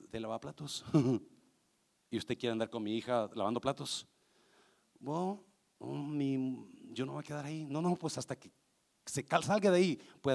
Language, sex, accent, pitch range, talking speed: Spanish, male, Mexican, 135-200 Hz, 180 wpm